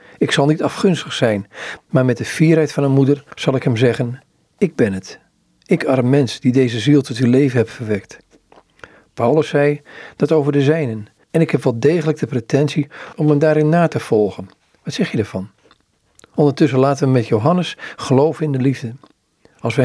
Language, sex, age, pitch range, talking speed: Dutch, male, 50-69, 120-150 Hz, 195 wpm